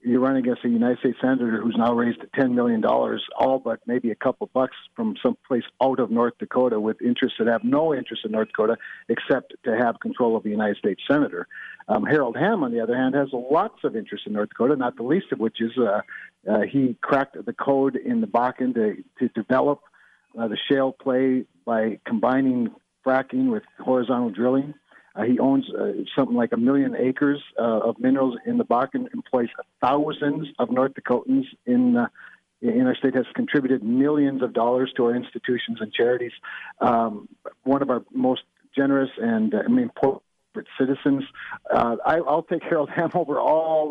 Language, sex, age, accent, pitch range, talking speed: English, male, 50-69, American, 120-150 Hz, 190 wpm